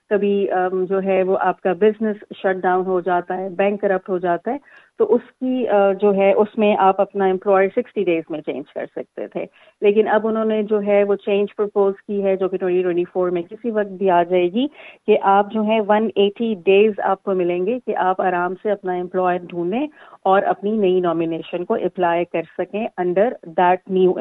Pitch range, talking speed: 180-215 Hz, 205 wpm